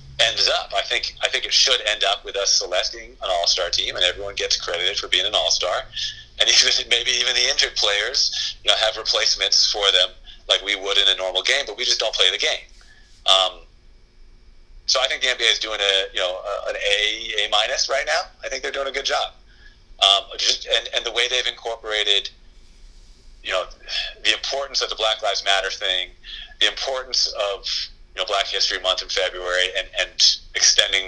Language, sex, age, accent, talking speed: English, male, 40-59, American, 205 wpm